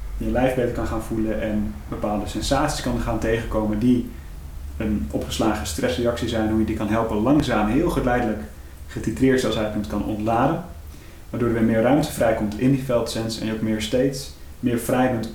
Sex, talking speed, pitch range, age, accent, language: male, 190 wpm, 105-120 Hz, 30-49, Dutch, Dutch